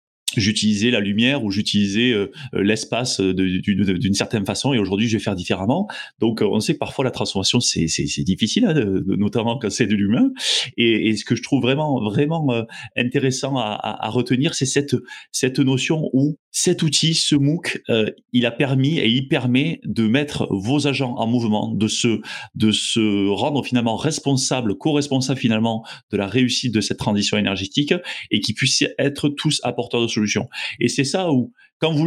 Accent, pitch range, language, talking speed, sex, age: French, 110-140 Hz, French, 180 wpm, male, 30-49